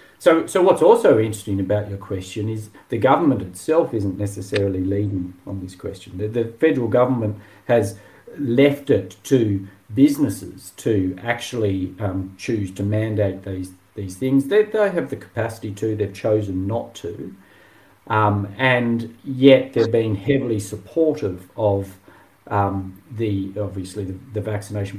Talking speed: 145 wpm